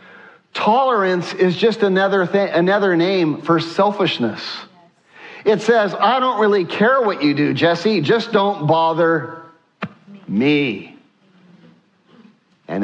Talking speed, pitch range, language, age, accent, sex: 105 wpm, 180-225 Hz, English, 50-69, American, male